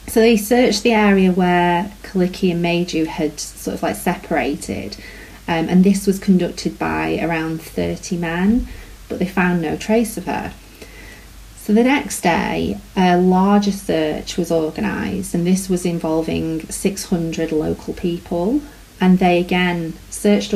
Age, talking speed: 30-49, 150 wpm